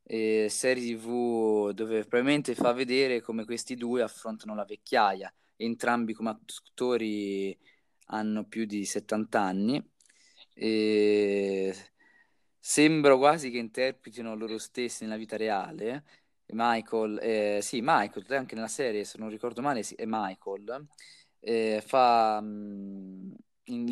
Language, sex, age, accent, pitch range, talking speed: Italian, male, 20-39, native, 105-125 Hz, 120 wpm